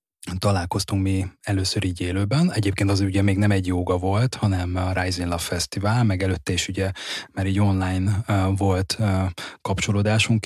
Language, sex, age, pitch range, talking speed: Hungarian, male, 20-39, 95-110 Hz, 155 wpm